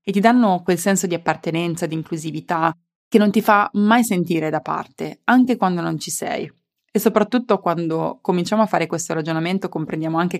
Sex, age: female, 20-39